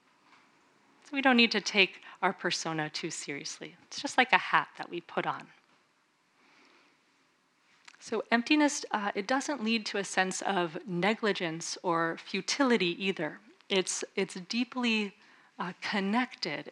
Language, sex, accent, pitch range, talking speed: English, female, American, 170-215 Hz, 135 wpm